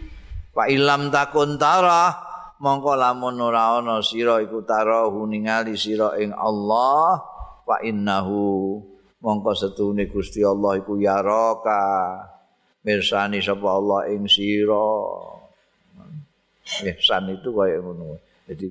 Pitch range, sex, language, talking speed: 95-120 Hz, male, Indonesian, 95 wpm